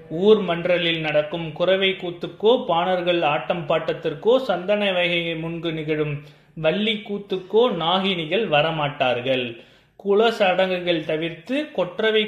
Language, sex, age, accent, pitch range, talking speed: Tamil, male, 30-49, native, 155-205 Hz, 100 wpm